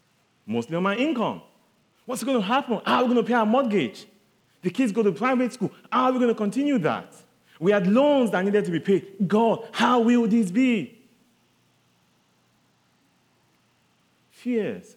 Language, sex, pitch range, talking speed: English, male, 130-215 Hz, 170 wpm